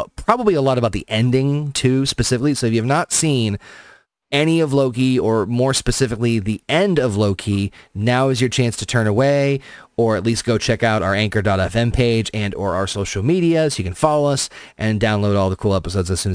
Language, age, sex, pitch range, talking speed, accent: English, 30-49, male, 105-140 Hz, 215 wpm, American